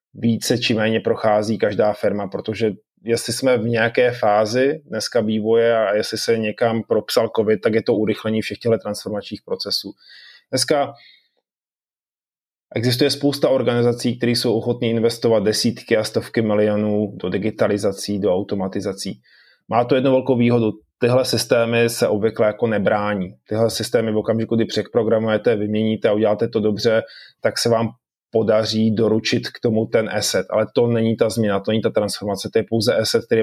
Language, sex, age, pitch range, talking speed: Czech, male, 20-39, 105-120 Hz, 160 wpm